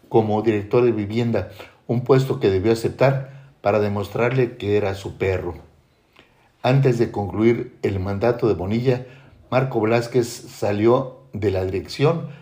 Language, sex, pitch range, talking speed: Spanish, male, 100-130 Hz, 135 wpm